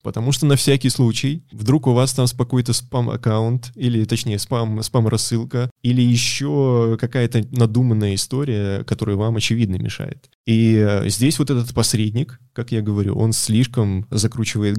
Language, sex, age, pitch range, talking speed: Ukrainian, male, 20-39, 110-130 Hz, 140 wpm